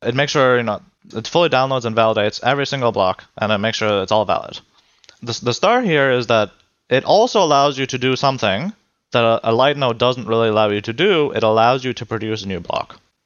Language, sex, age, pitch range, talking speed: English, male, 20-39, 110-135 Hz, 235 wpm